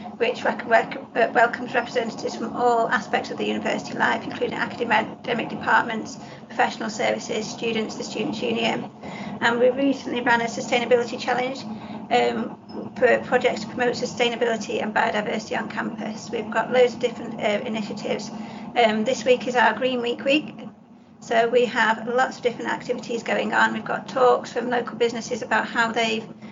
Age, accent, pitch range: 40-59, British, 230-250 Hz